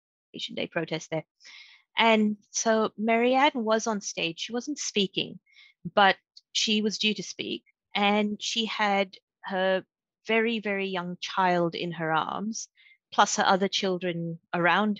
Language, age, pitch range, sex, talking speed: English, 30-49, 185-235 Hz, female, 135 wpm